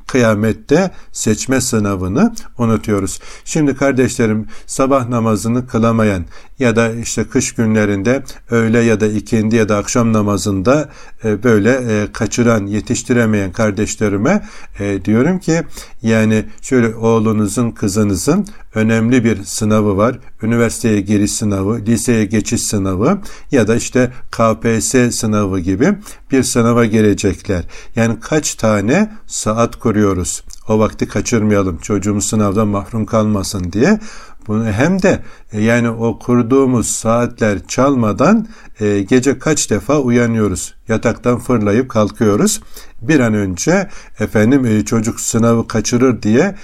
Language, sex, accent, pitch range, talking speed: Turkish, male, native, 105-125 Hz, 115 wpm